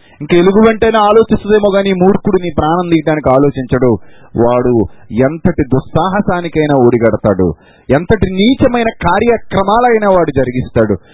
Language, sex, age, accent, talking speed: Telugu, male, 30-49, native, 95 wpm